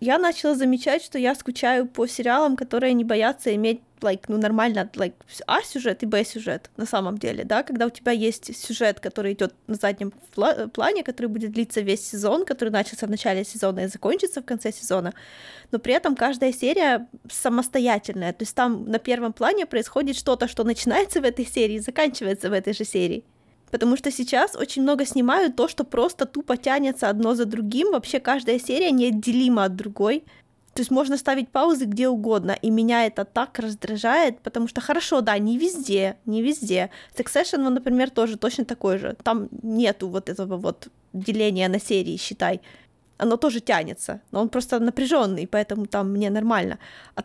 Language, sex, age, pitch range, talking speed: Ukrainian, female, 20-39, 220-270 Hz, 180 wpm